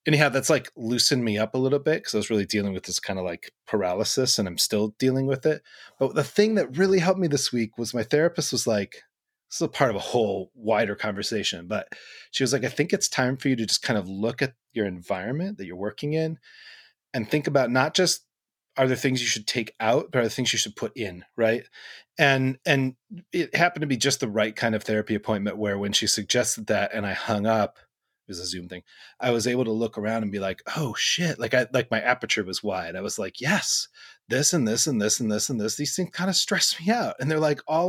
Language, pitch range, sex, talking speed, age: English, 110-155 Hz, male, 255 wpm, 30-49